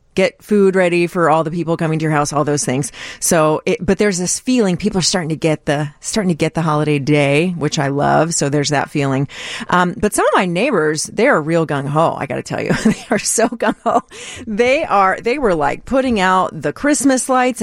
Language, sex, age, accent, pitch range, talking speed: English, female, 30-49, American, 155-210 Hz, 230 wpm